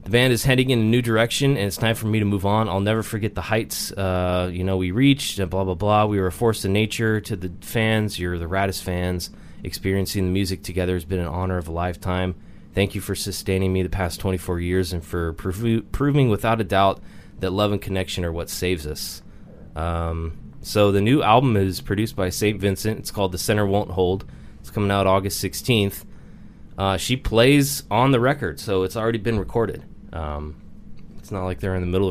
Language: English